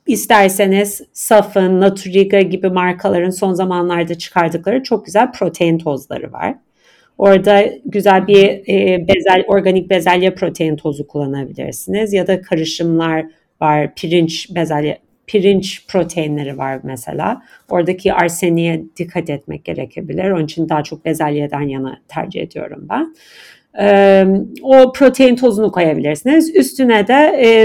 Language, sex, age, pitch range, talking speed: Turkish, female, 50-69, 170-230 Hz, 120 wpm